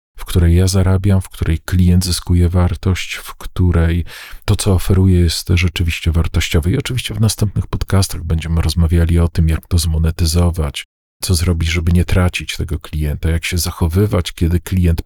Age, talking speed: 40-59, 165 wpm